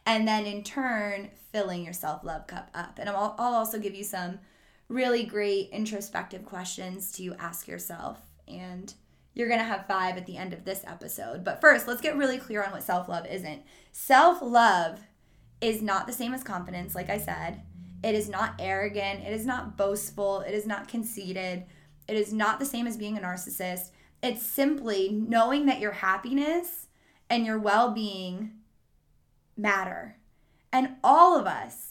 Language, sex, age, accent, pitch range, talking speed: English, female, 20-39, American, 195-235 Hz, 170 wpm